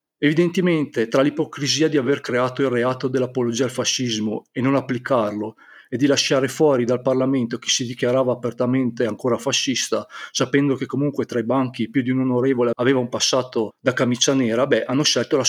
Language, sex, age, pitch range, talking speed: Italian, male, 40-59, 120-140 Hz, 180 wpm